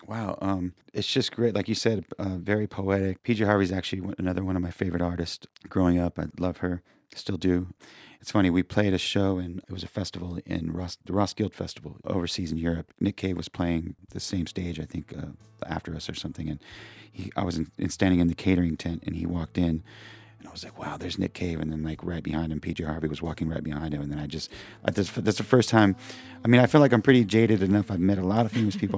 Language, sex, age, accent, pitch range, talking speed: English, male, 40-59, American, 85-105 Hz, 245 wpm